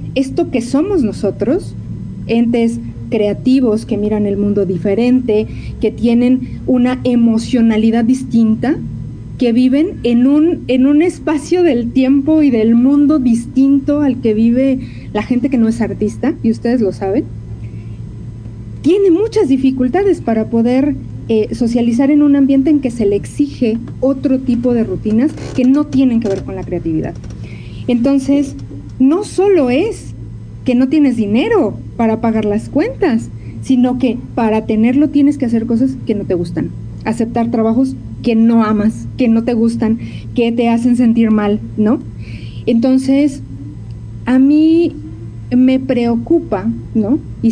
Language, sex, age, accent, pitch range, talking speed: Spanish, female, 40-59, Mexican, 220-270 Hz, 145 wpm